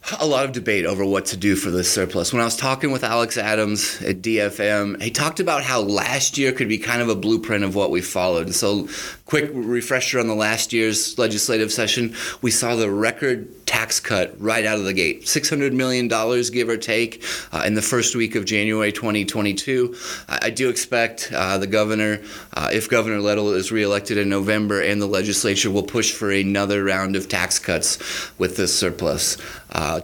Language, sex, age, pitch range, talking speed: English, male, 30-49, 100-120 Hz, 200 wpm